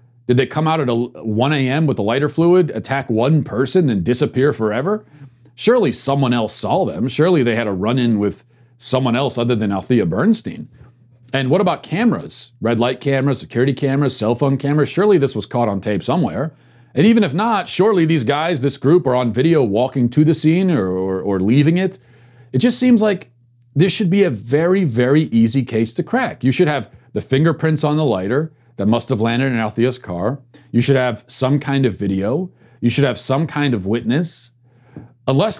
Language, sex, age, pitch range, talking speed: English, male, 40-59, 120-155 Hz, 200 wpm